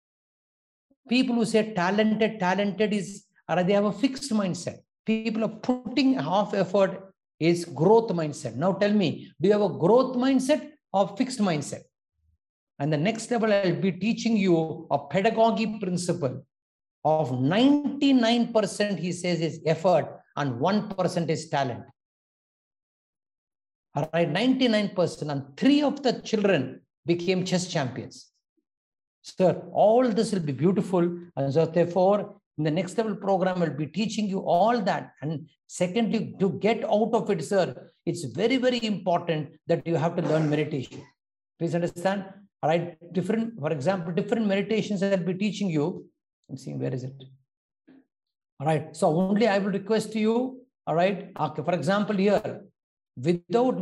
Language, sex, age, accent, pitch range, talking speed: English, male, 60-79, Indian, 165-220 Hz, 150 wpm